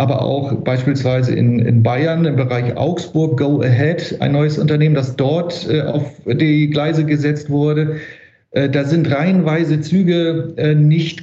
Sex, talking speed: male, 155 wpm